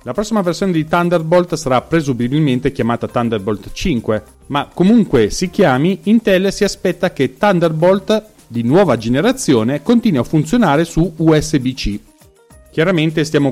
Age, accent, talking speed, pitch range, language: 40-59, native, 130 wpm, 120-170 Hz, Italian